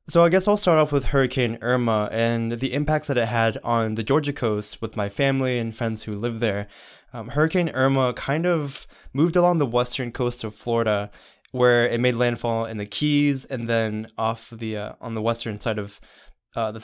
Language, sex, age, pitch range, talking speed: English, male, 20-39, 110-140 Hz, 210 wpm